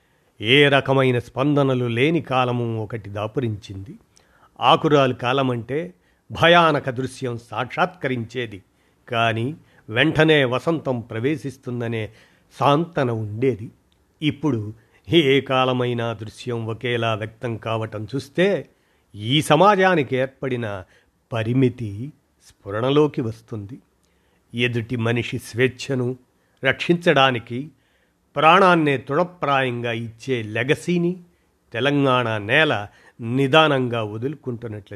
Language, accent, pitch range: Telugu, native, 115-145 Hz